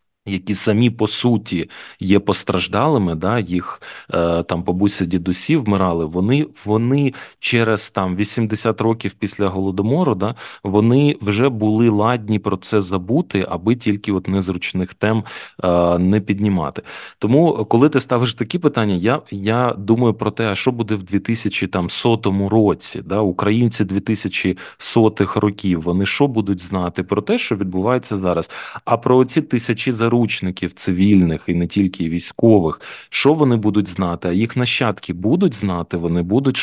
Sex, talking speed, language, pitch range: male, 145 wpm, Ukrainian, 95-120 Hz